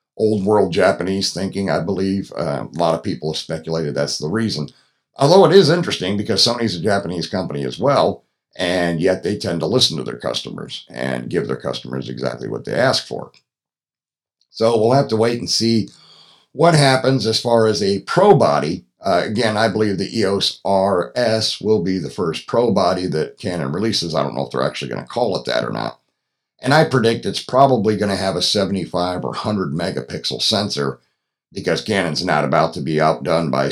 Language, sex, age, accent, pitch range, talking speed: English, male, 50-69, American, 85-115 Hz, 195 wpm